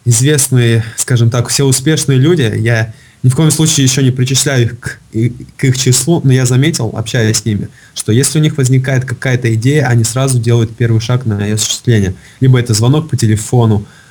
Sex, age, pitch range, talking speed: male, 20-39, 110-130 Hz, 190 wpm